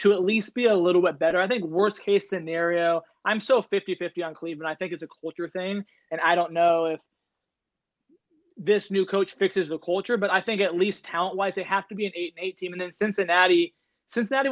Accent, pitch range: American, 175-210 Hz